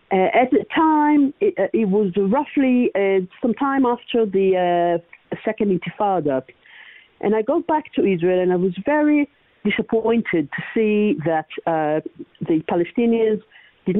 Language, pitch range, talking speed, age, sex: Hebrew, 175-240 Hz, 150 wpm, 50-69, female